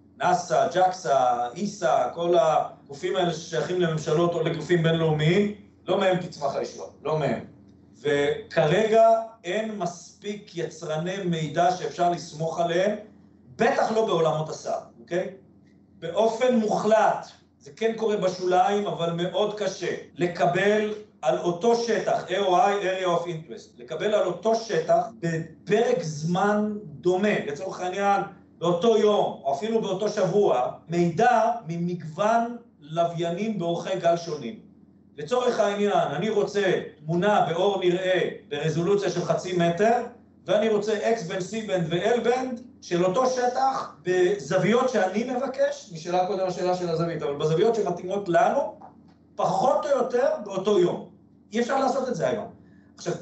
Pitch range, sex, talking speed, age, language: 170-220 Hz, male, 130 wpm, 40-59, Hebrew